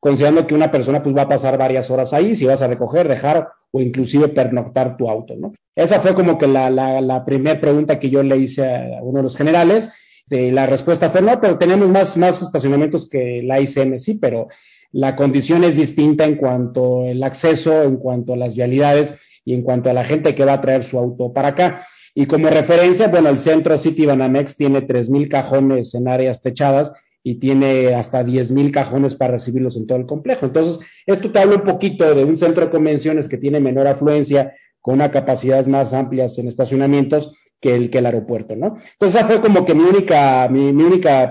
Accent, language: Mexican, Spanish